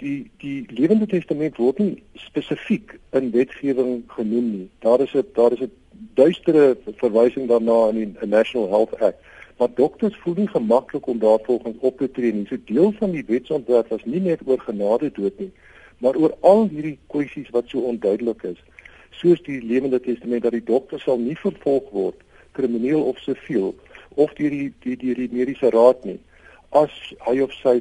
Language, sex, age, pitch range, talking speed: Malay, male, 50-69, 115-145 Hz, 190 wpm